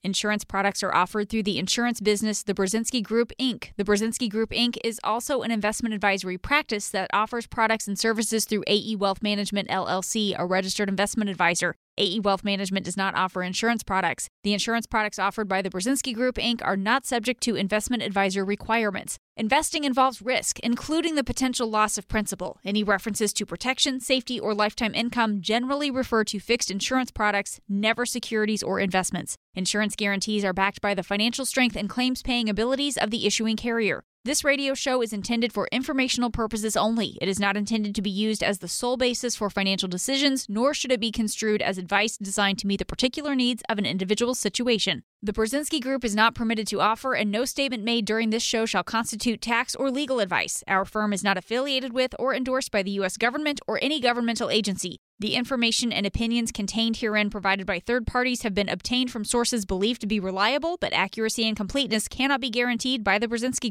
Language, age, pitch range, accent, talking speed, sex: English, 20-39, 200-245 Hz, American, 195 wpm, female